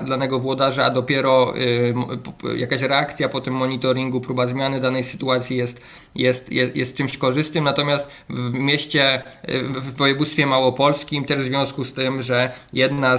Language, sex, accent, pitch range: Polish, male, native, 125-140 Hz